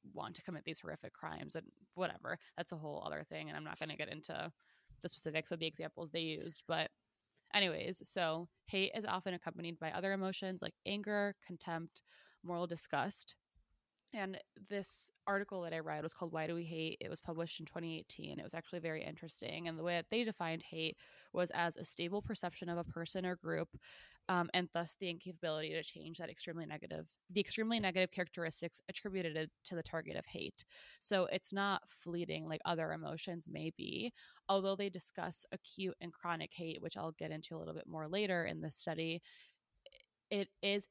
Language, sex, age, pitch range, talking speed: English, female, 20-39, 165-190 Hz, 190 wpm